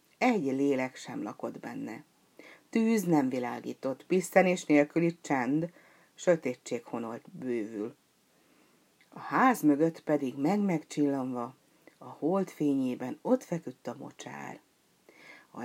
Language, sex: Hungarian, female